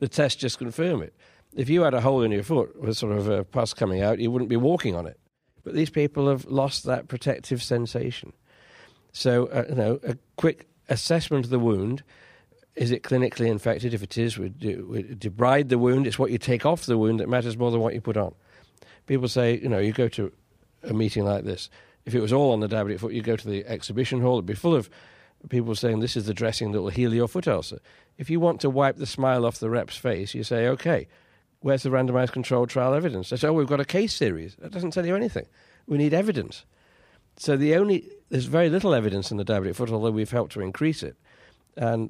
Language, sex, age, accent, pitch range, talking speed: English, male, 50-69, British, 110-135 Hz, 235 wpm